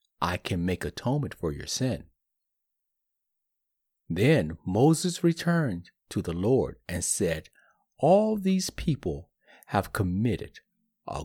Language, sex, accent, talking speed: English, male, American, 110 wpm